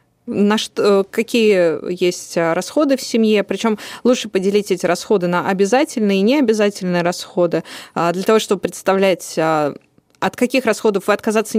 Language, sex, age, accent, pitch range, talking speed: Russian, female, 20-39, native, 180-225 Hz, 135 wpm